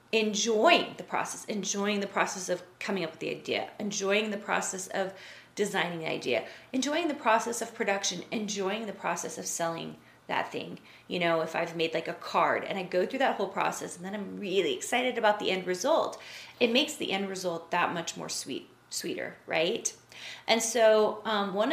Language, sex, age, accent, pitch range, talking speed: English, female, 30-49, American, 170-225 Hz, 195 wpm